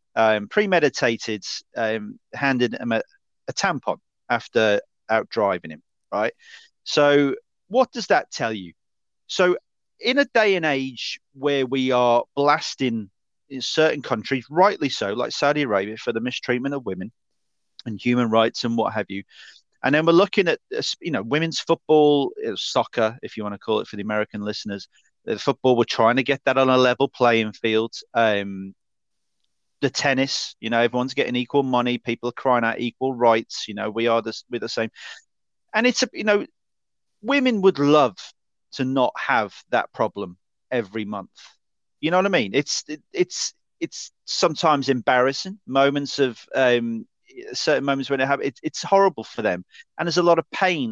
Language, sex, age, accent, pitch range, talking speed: English, male, 30-49, British, 115-160 Hz, 175 wpm